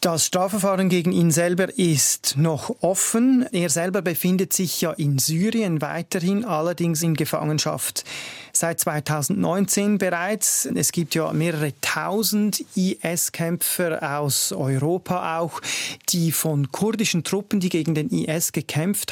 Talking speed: 125 wpm